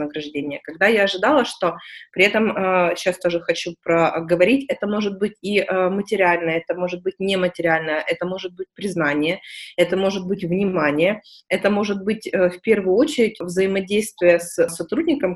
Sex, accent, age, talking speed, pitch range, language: female, native, 20-39, 140 wpm, 170-200 Hz, Russian